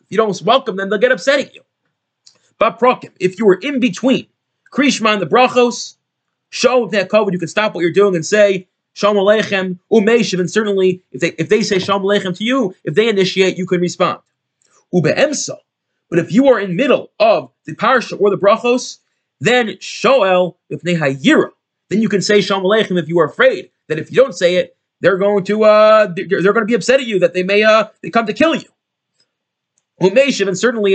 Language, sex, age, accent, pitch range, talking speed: English, male, 30-49, American, 175-225 Hz, 205 wpm